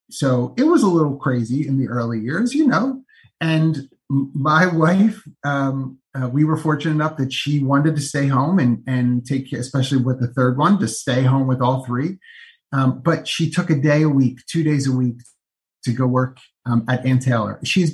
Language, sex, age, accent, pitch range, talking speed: English, male, 30-49, American, 130-170 Hz, 210 wpm